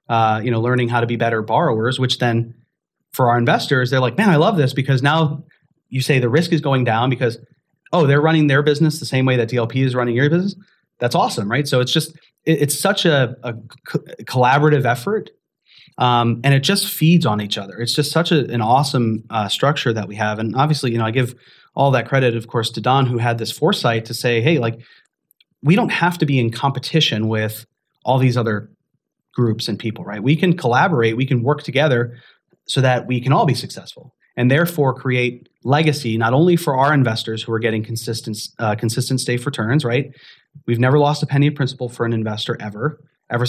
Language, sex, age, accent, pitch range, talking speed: English, male, 30-49, American, 115-150 Hz, 215 wpm